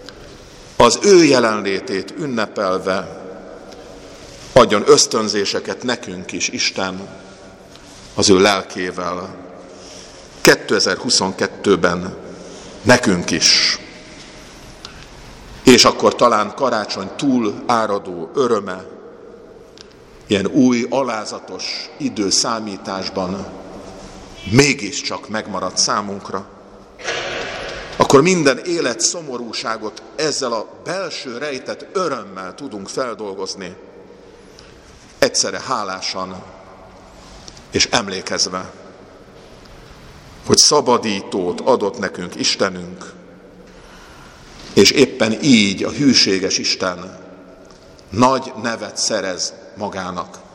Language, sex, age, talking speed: Hungarian, male, 50-69, 70 wpm